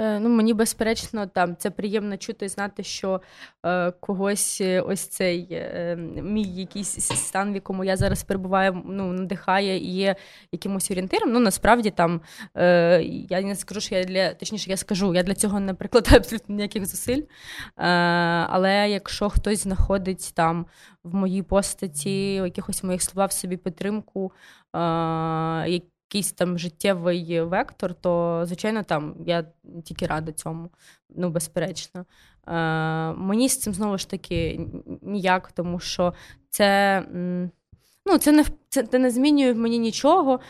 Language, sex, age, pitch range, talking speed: Ukrainian, female, 20-39, 180-215 Hz, 150 wpm